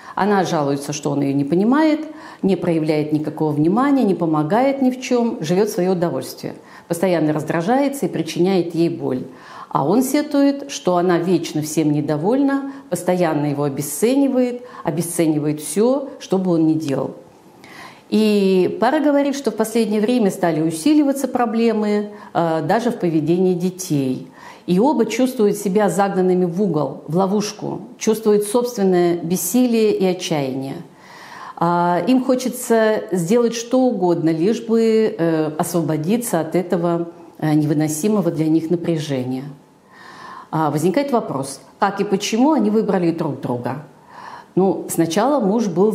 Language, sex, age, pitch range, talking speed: Russian, female, 50-69, 160-225 Hz, 130 wpm